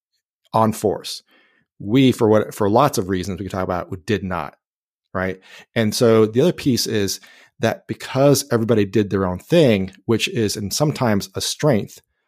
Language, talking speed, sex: English, 180 wpm, male